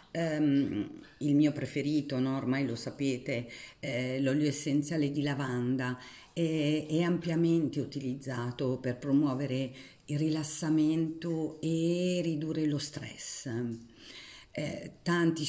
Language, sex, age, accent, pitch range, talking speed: Italian, female, 50-69, native, 135-160 Hz, 95 wpm